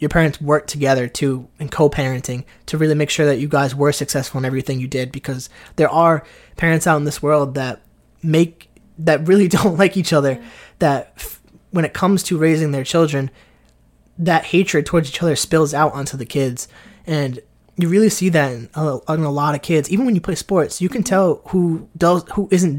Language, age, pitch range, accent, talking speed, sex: English, 20-39, 135-165 Hz, American, 210 wpm, male